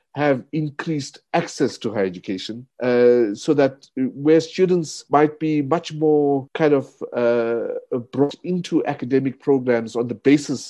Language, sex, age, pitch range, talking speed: English, male, 50-69, 110-150 Hz, 140 wpm